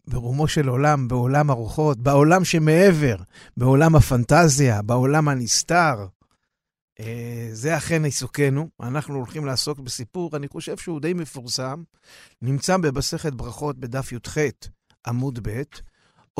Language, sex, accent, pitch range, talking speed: Hebrew, male, native, 130-170 Hz, 110 wpm